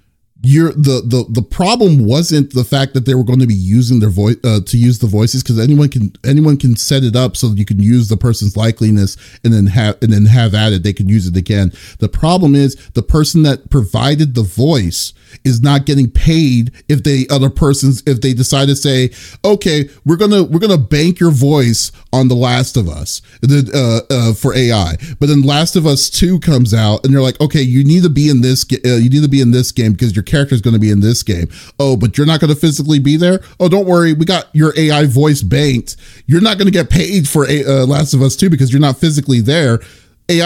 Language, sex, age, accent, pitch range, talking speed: English, male, 30-49, American, 120-150 Hz, 245 wpm